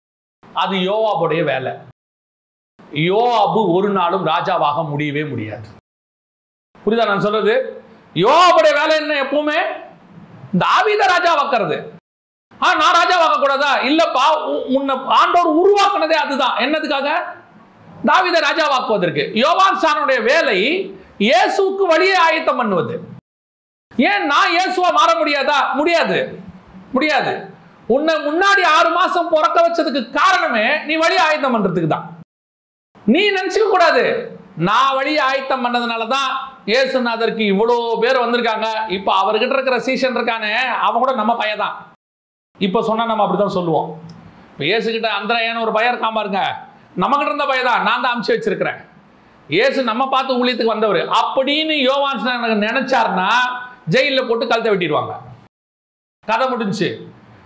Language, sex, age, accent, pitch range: Tamil, male, 40-59, native, 220-320 Hz